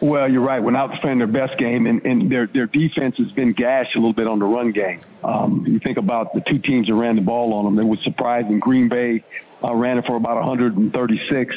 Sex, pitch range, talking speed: male, 115-140 Hz, 245 wpm